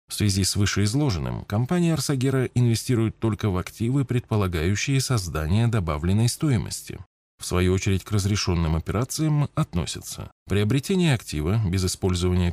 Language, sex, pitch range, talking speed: Russian, male, 90-125 Hz, 120 wpm